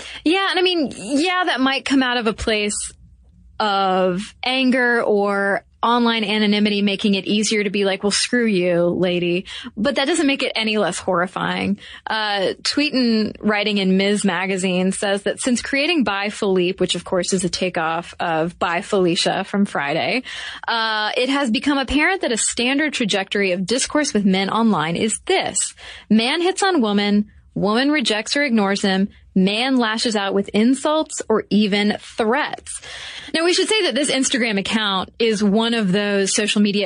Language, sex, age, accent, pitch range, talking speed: English, female, 20-39, American, 190-240 Hz, 175 wpm